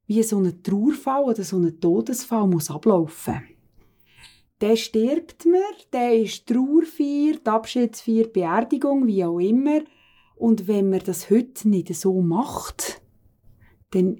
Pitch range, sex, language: 180-225 Hz, female, German